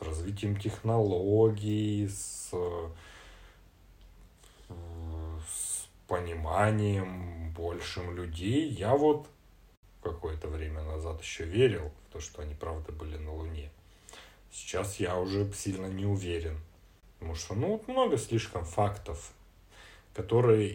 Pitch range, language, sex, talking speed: 85-105 Hz, Russian, male, 105 wpm